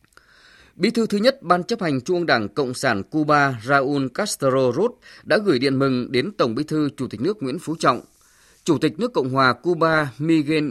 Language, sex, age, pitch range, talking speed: Vietnamese, male, 20-39, 130-165 Hz, 205 wpm